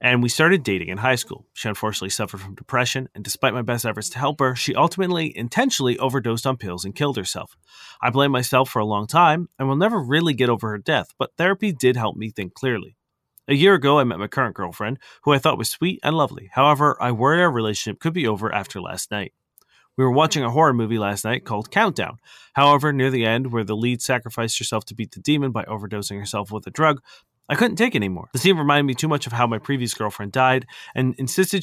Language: English